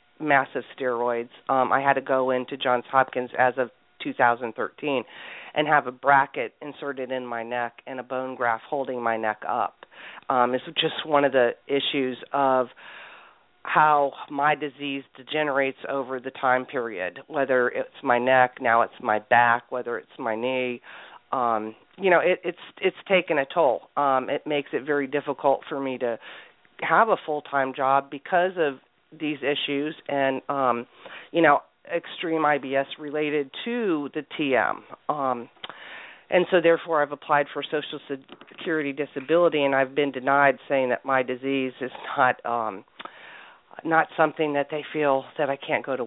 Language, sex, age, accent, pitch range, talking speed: English, female, 40-59, American, 125-150 Hz, 160 wpm